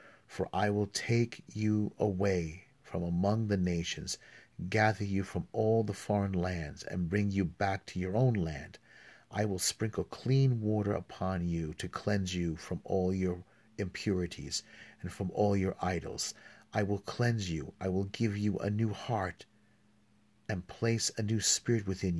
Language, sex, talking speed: English, male, 165 wpm